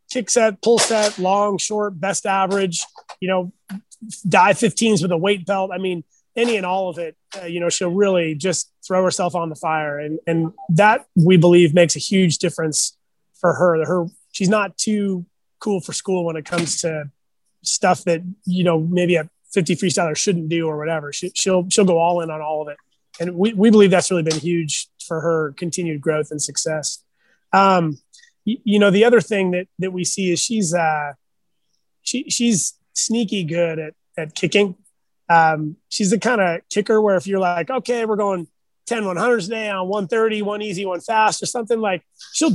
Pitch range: 170-205 Hz